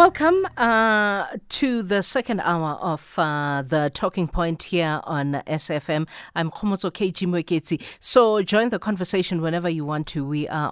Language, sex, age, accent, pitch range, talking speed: English, female, 50-69, South African, 150-195 Hz, 155 wpm